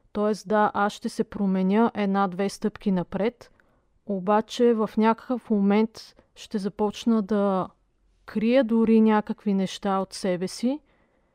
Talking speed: 120 wpm